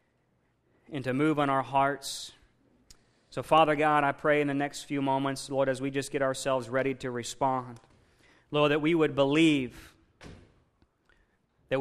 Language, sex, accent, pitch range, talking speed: English, male, American, 130-155 Hz, 160 wpm